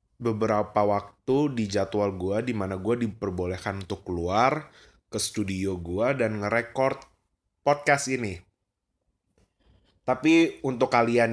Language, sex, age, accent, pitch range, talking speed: Indonesian, male, 20-39, native, 105-125 Hz, 105 wpm